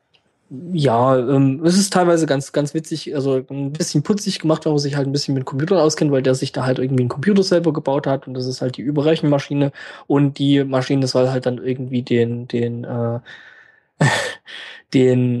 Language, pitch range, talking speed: German, 135-155 Hz, 195 wpm